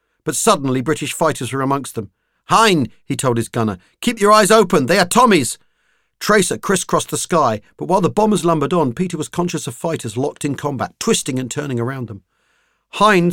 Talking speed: 195 wpm